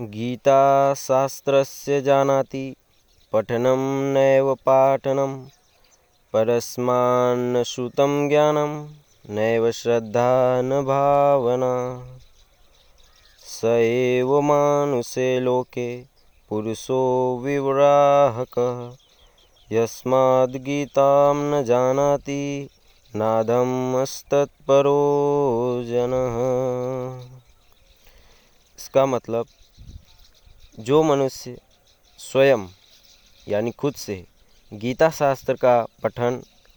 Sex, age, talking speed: male, 20-39, 50 wpm